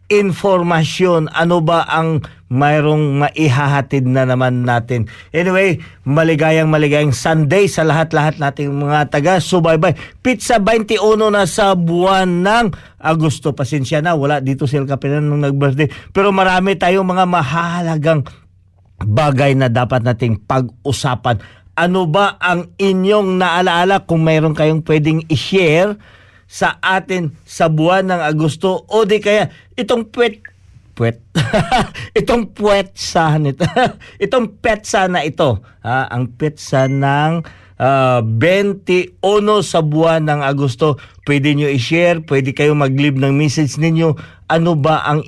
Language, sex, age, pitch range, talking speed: Filipino, male, 50-69, 135-180 Hz, 130 wpm